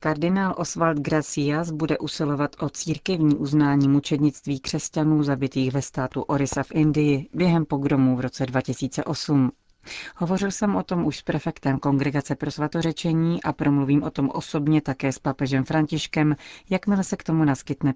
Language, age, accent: Czech, 40-59, native